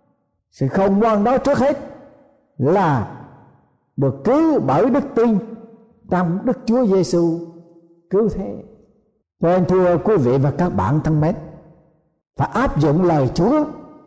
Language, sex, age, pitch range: Thai, male, 60-79, 145-220 Hz